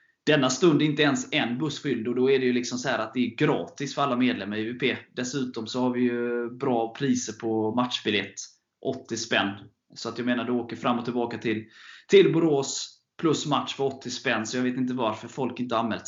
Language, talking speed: Swedish, 230 wpm